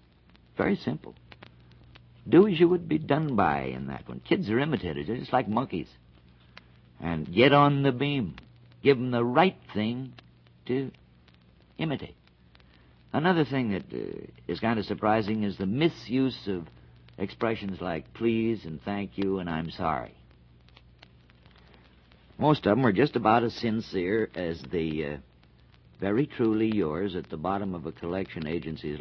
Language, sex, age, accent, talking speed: English, male, 60-79, American, 150 wpm